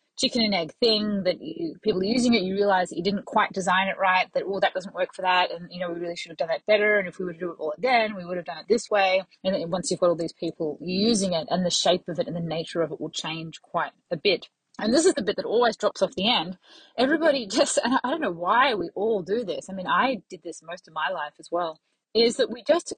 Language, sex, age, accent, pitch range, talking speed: English, female, 20-39, Australian, 175-230 Hz, 300 wpm